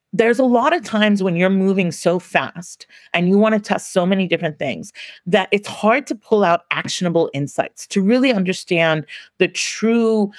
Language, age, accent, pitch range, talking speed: English, 40-59, American, 155-200 Hz, 185 wpm